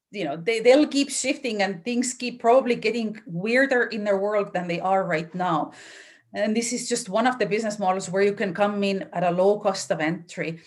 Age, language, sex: 30-49, English, female